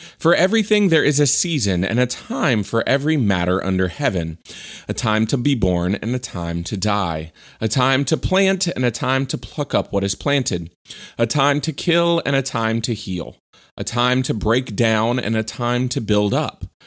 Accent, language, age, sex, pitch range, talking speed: American, English, 30-49, male, 95-130 Hz, 205 wpm